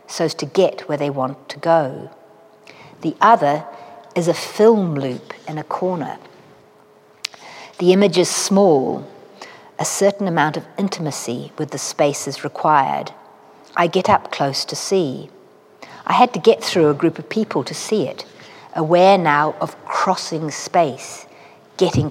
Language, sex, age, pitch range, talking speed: English, female, 50-69, 145-190 Hz, 150 wpm